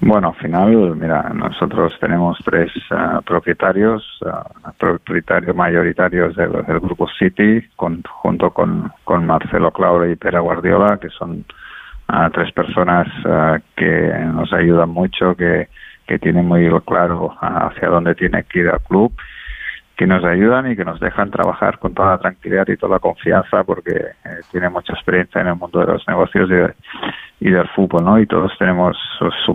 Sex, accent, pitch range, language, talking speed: male, Spanish, 90-95 Hz, Spanish, 175 wpm